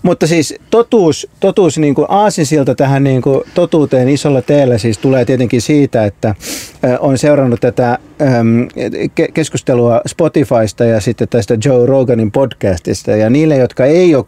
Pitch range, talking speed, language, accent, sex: 115-150 Hz, 120 wpm, Finnish, native, male